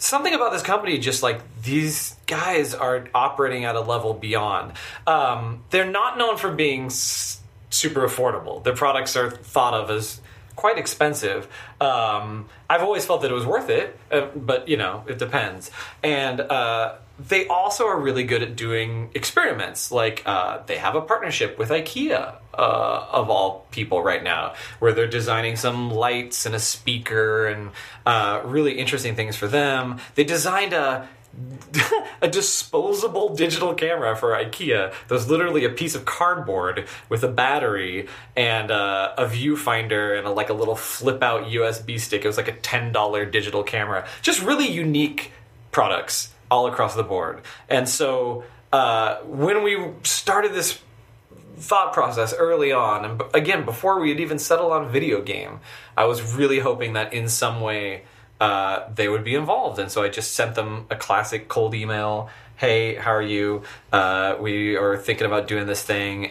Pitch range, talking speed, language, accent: 110-150 Hz, 165 wpm, English, American